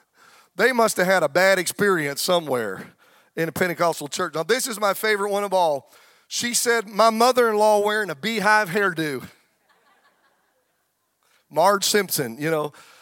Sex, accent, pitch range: male, American, 170-220 Hz